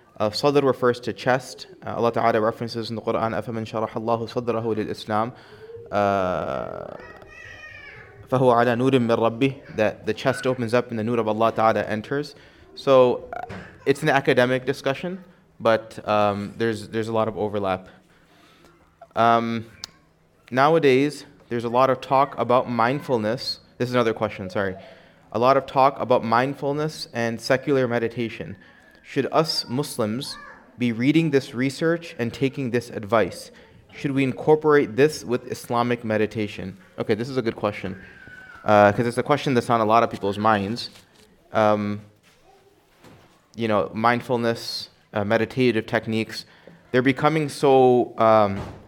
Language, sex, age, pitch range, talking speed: English, male, 20-39, 110-130 Hz, 135 wpm